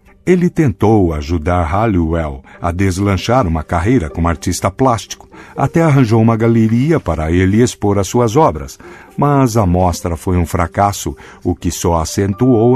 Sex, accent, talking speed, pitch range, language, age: male, Brazilian, 145 wpm, 85-120 Hz, Portuguese, 60-79